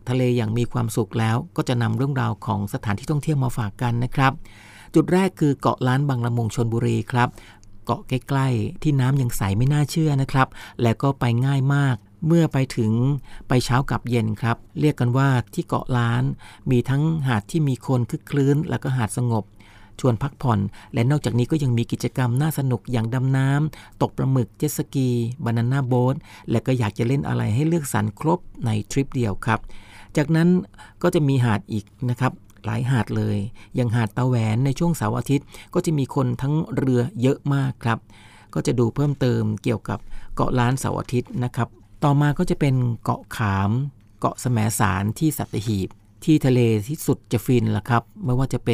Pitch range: 110-135 Hz